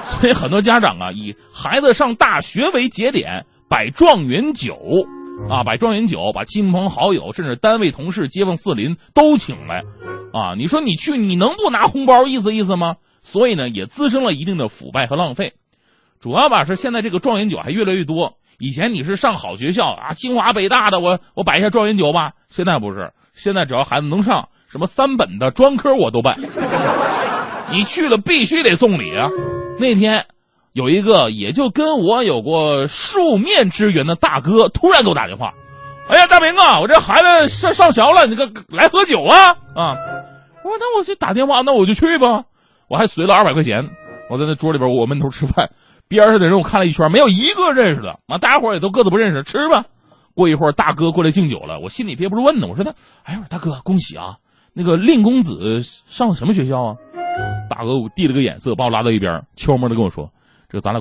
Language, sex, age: Chinese, male, 30-49